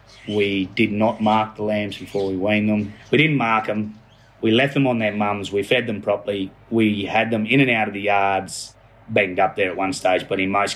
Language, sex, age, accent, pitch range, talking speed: English, male, 30-49, Australian, 95-115 Hz, 235 wpm